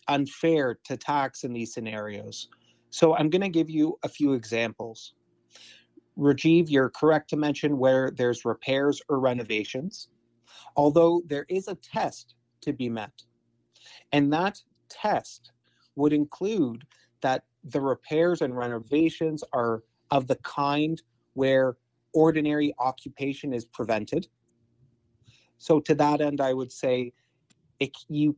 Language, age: English, 30-49